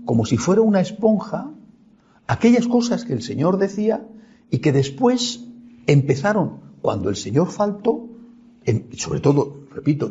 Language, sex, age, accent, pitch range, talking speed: Spanish, male, 60-79, Spanish, 150-220 Hz, 130 wpm